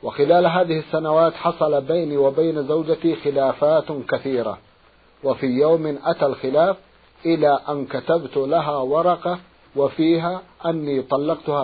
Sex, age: male, 50-69